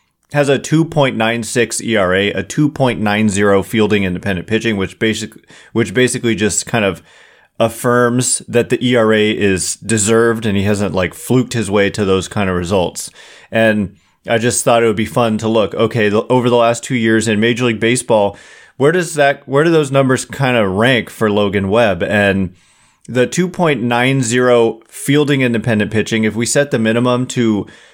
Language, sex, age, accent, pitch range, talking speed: English, male, 30-49, American, 105-125 Hz, 170 wpm